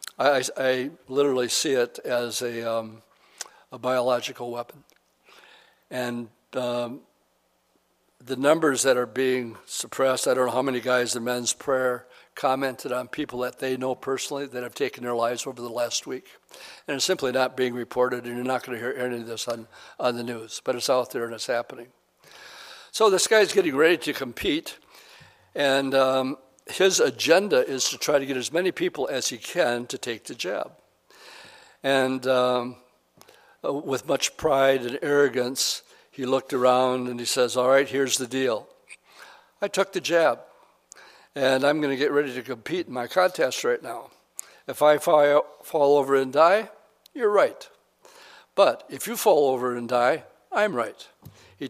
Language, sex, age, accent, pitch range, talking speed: English, male, 60-79, American, 125-145 Hz, 170 wpm